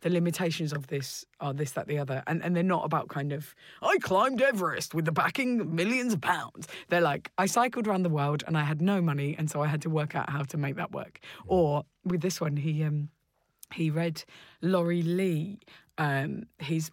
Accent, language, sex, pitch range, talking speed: British, English, female, 150-175 Hz, 220 wpm